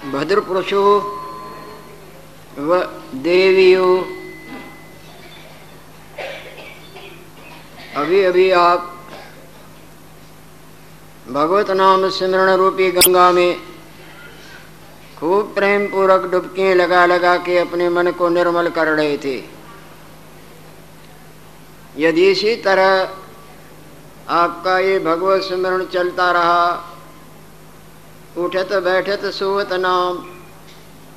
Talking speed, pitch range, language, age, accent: 75 wpm, 175-200 Hz, Hindi, 50-69, native